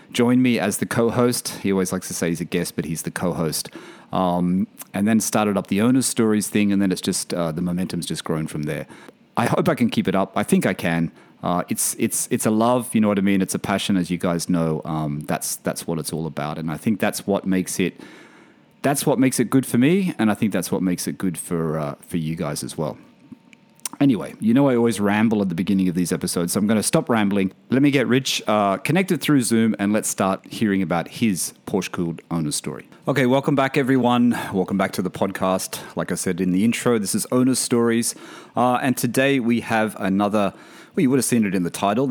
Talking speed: 245 wpm